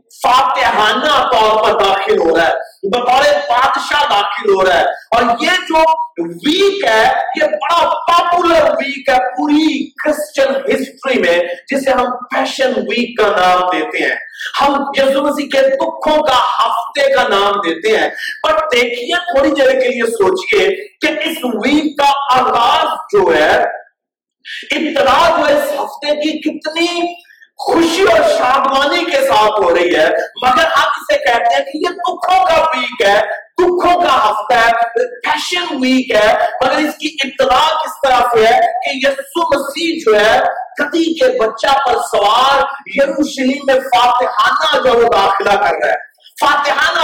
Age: 50-69